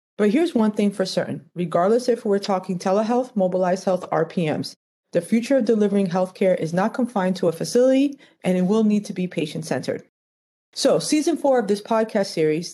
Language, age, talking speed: English, 30-49, 185 wpm